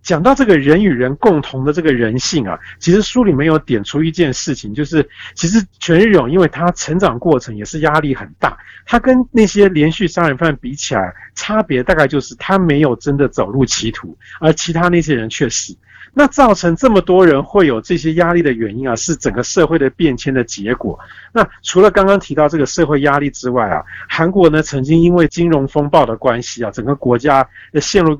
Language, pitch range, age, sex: Chinese, 135-175 Hz, 50-69, male